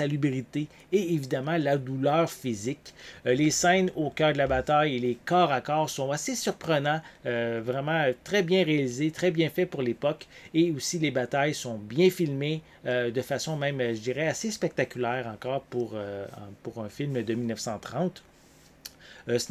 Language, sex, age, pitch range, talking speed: English, male, 30-49, 125-170 Hz, 170 wpm